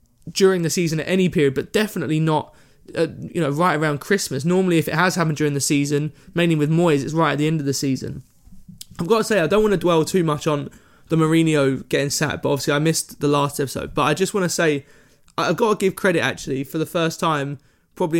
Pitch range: 145-175 Hz